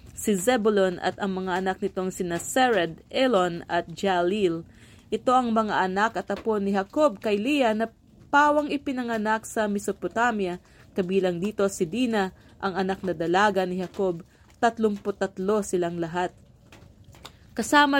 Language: English